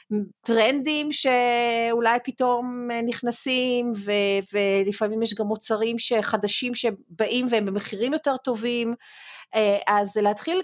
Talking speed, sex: 95 wpm, female